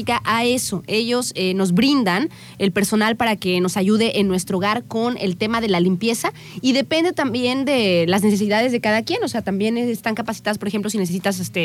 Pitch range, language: 205-260 Hz, Spanish